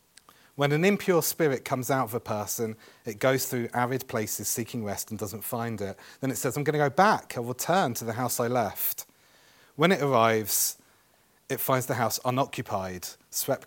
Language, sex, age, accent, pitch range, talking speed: English, male, 30-49, British, 110-140 Hz, 200 wpm